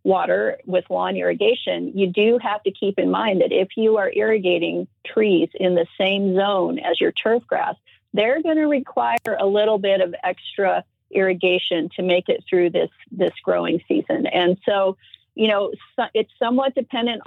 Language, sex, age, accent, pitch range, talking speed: English, female, 40-59, American, 185-235 Hz, 175 wpm